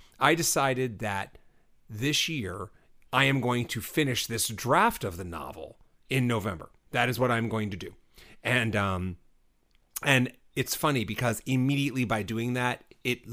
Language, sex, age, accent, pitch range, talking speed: English, male, 30-49, American, 105-130 Hz, 160 wpm